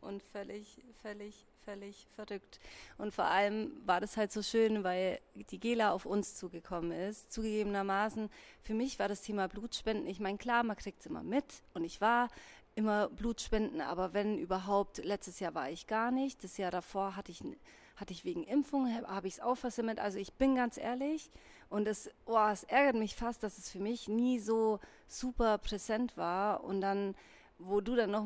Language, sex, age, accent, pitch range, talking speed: German, female, 30-49, German, 200-235 Hz, 195 wpm